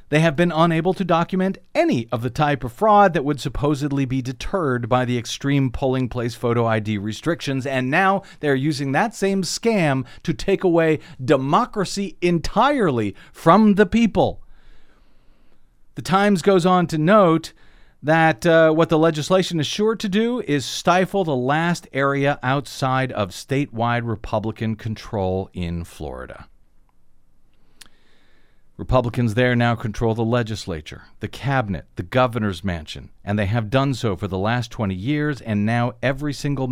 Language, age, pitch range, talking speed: English, 40-59, 110-155 Hz, 150 wpm